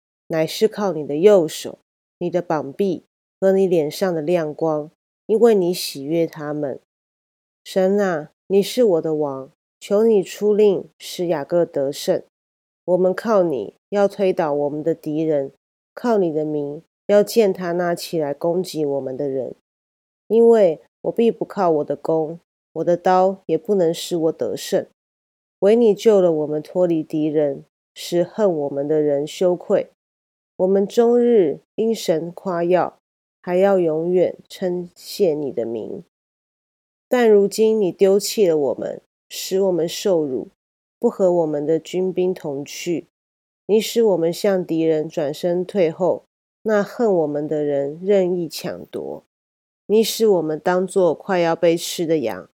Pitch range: 155-195 Hz